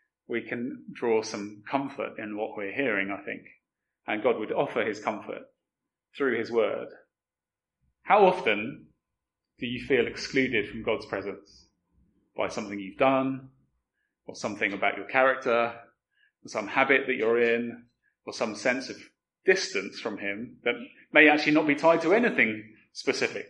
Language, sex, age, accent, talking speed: English, male, 30-49, British, 155 wpm